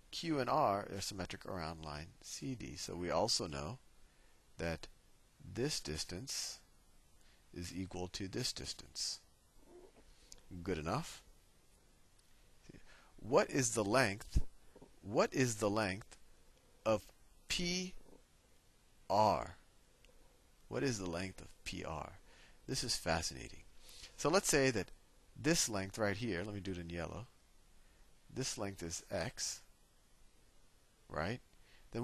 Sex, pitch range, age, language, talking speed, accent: male, 85-125 Hz, 50-69, English, 115 wpm, American